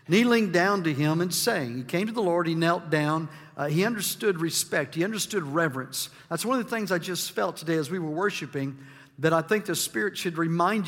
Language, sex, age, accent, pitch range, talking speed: English, male, 50-69, American, 175-220 Hz, 225 wpm